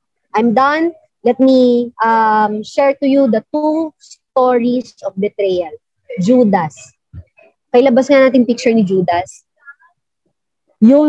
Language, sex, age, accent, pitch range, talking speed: Filipino, male, 30-49, native, 230-305 Hz, 115 wpm